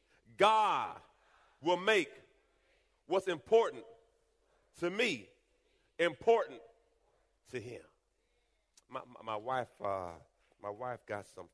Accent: American